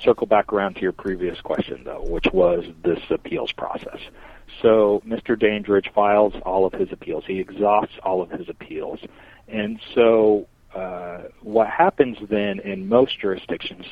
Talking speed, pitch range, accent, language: 155 wpm, 95-110 Hz, American, English